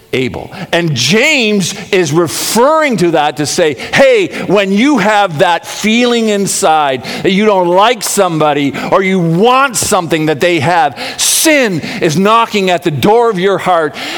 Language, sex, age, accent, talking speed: English, male, 50-69, American, 155 wpm